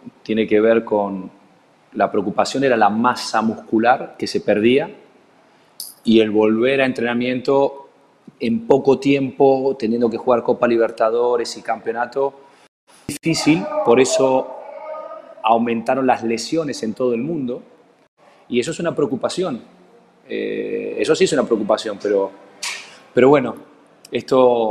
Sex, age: male, 20-39